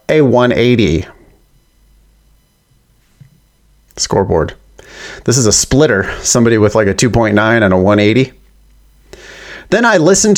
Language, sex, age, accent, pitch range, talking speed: English, male, 30-49, American, 105-145 Hz, 105 wpm